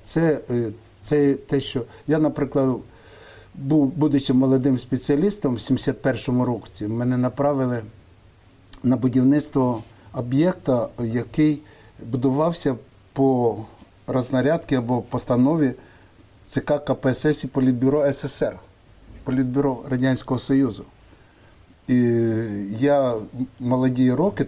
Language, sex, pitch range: Russian, male, 115-135 Hz